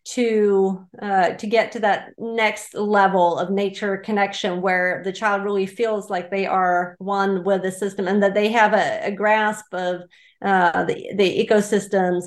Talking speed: 170 wpm